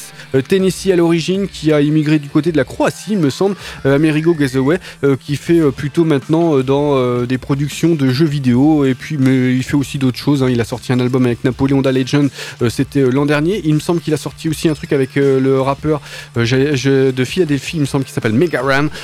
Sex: male